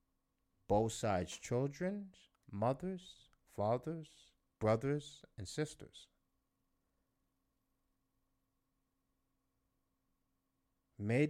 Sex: male